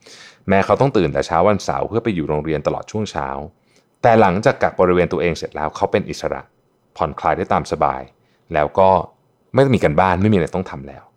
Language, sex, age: Thai, male, 30-49